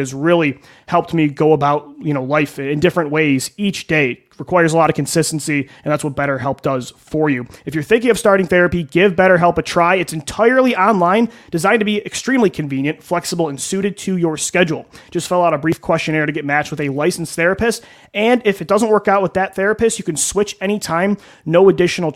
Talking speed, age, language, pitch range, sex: 210 wpm, 30-49, English, 150-190 Hz, male